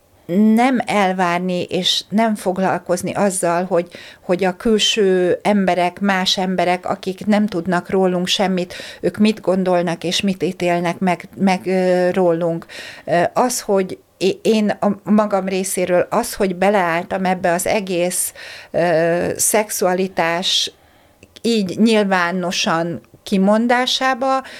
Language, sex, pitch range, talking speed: Hungarian, female, 175-210 Hz, 110 wpm